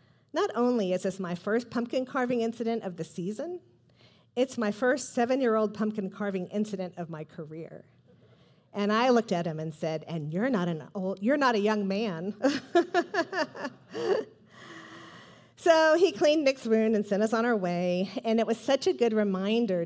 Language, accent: English, American